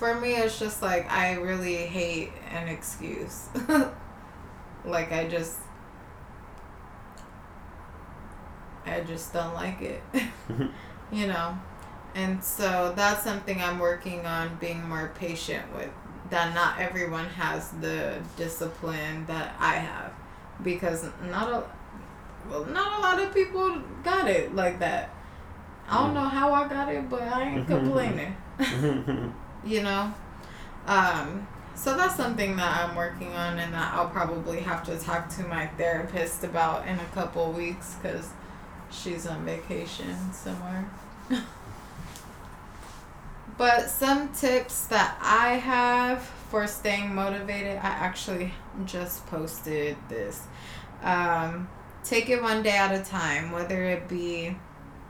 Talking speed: 130 wpm